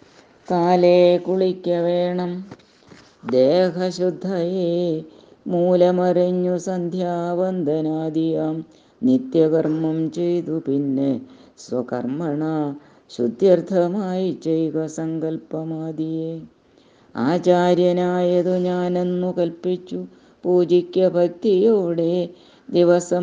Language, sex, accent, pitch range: Malayalam, female, native, 155-180 Hz